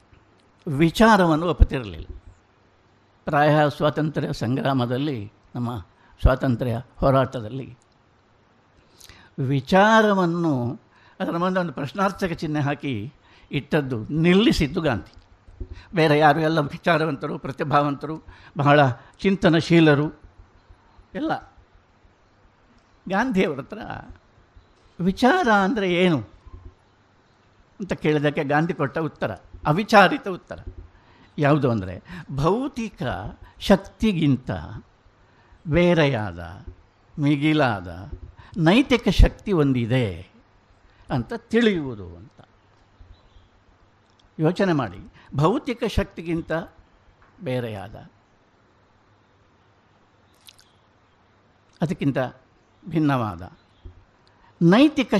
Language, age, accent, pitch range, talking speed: Kannada, 60-79, native, 100-155 Hz, 60 wpm